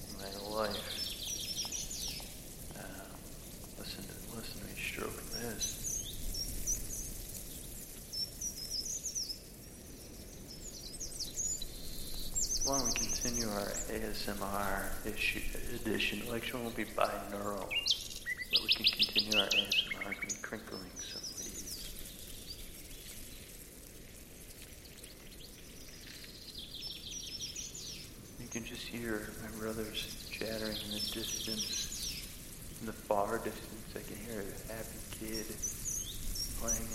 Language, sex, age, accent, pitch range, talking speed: English, male, 40-59, American, 105-115 Hz, 90 wpm